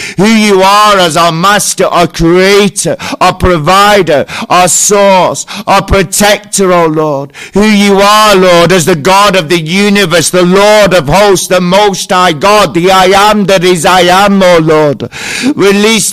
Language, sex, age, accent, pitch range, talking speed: English, male, 50-69, British, 185-210 Hz, 165 wpm